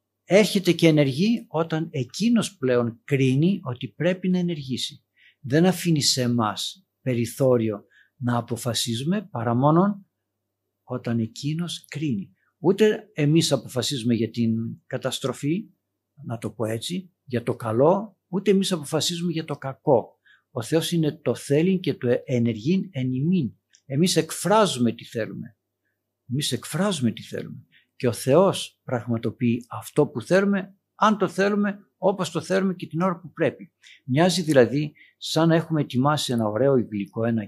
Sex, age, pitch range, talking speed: male, 50-69, 120-175 Hz, 140 wpm